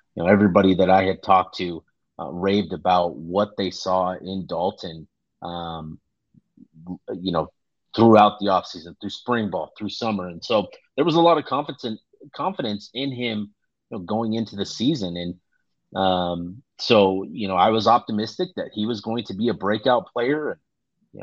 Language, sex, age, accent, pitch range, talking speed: English, male, 30-49, American, 95-125 Hz, 180 wpm